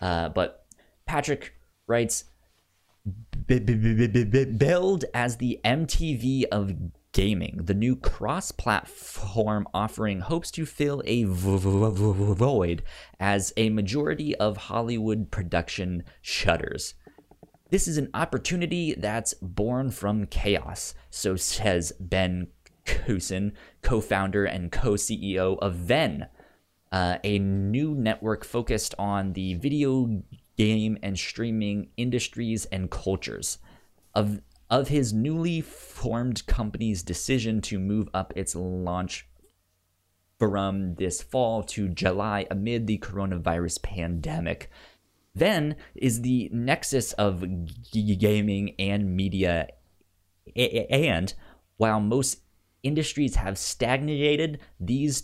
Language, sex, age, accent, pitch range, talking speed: English, male, 20-39, American, 90-120 Hz, 100 wpm